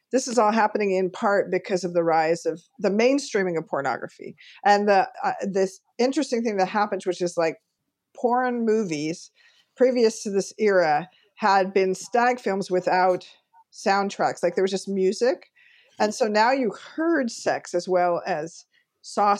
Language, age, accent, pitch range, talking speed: English, 50-69, American, 185-245 Hz, 165 wpm